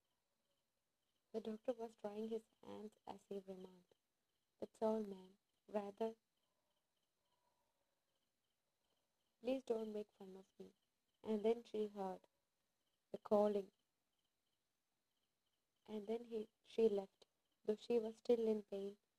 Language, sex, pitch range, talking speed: English, female, 200-225 Hz, 110 wpm